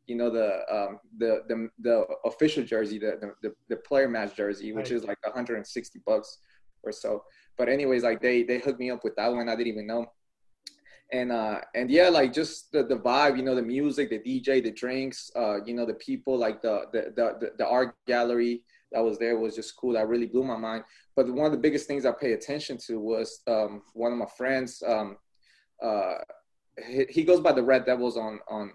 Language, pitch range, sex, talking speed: English, 115-145 Hz, male, 215 wpm